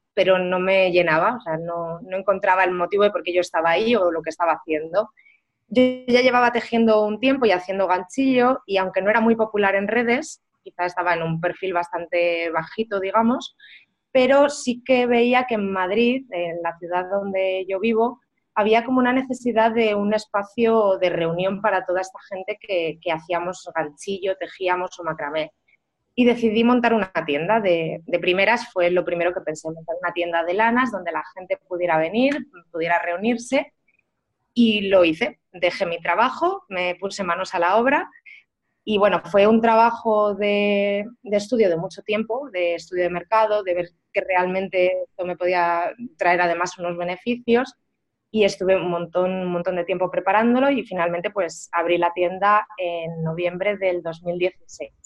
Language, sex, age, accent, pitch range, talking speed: Spanish, female, 20-39, Spanish, 175-225 Hz, 175 wpm